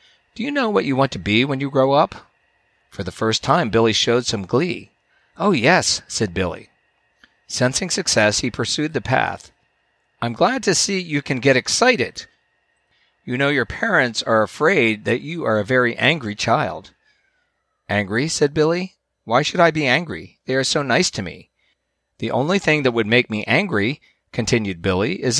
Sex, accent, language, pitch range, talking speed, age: male, American, English, 105-140 Hz, 180 wpm, 40-59